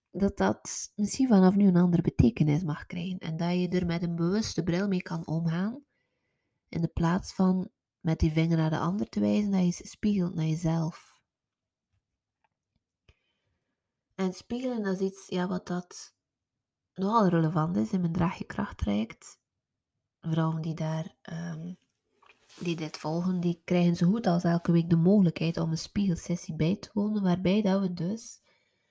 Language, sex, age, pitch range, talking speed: Dutch, female, 20-39, 170-190 Hz, 160 wpm